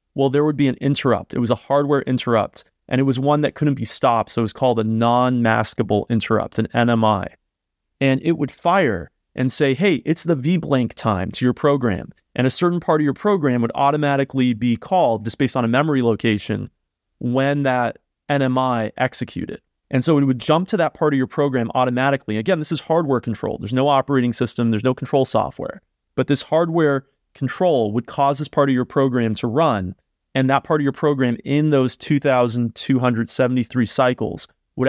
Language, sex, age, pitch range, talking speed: English, male, 30-49, 120-145 Hz, 195 wpm